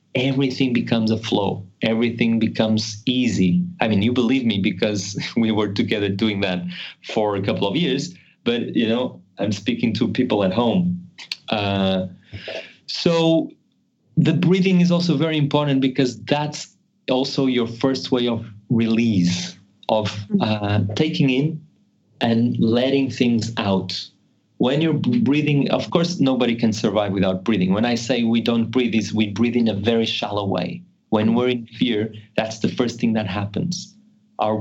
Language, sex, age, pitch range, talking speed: English, male, 30-49, 105-145 Hz, 155 wpm